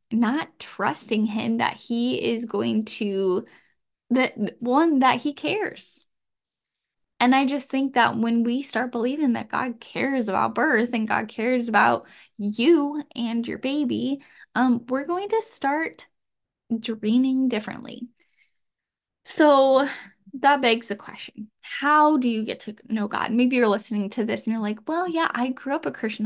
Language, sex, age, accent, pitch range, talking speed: English, female, 10-29, American, 220-285 Hz, 160 wpm